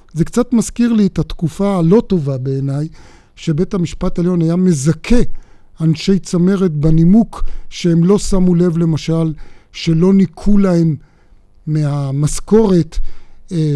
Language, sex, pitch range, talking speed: Hebrew, male, 155-185 Hz, 120 wpm